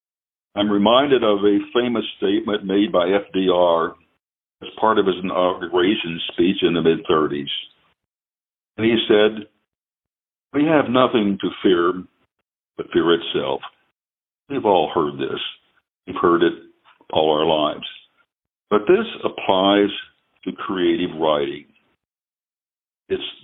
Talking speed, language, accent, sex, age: 120 wpm, English, American, male, 60-79